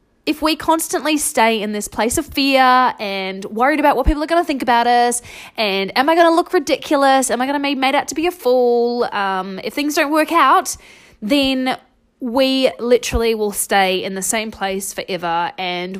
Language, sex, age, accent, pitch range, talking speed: English, female, 20-39, Australian, 215-310 Hz, 205 wpm